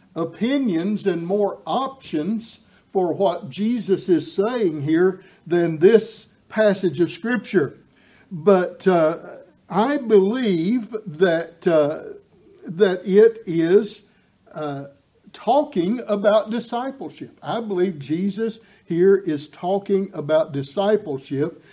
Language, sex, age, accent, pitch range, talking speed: English, male, 60-79, American, 180-230 Hz, 100 wpm